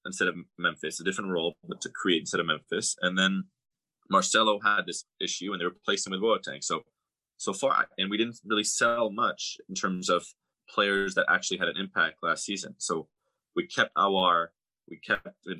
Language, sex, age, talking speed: English, male, 20-39, 190 wpm